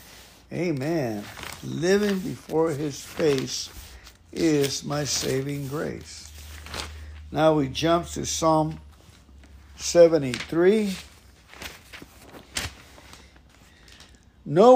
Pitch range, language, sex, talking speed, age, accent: 140-180 Hz, English, male, 65 wpm, 60-79, American